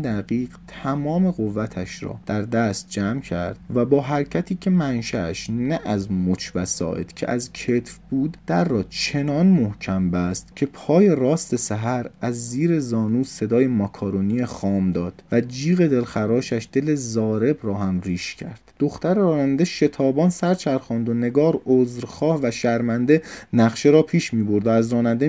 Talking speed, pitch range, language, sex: 150 wpm, 105-140 Hz, Persian, male